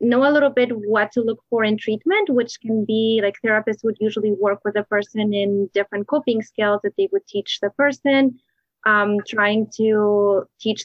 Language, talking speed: English, 195 wpm